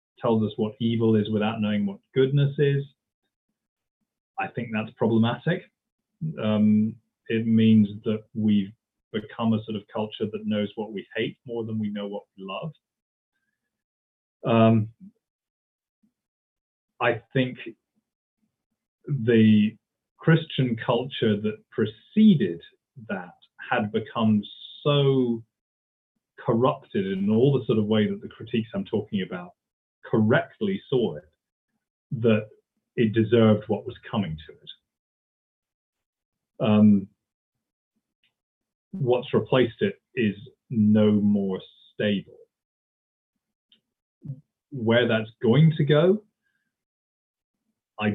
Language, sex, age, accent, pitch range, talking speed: English, male, 30-49, British, 105-145 Hz, 105 wpm